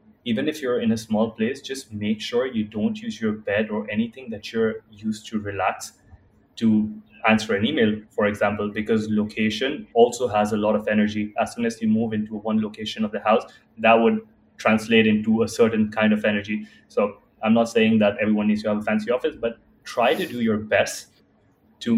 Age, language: 20-39, English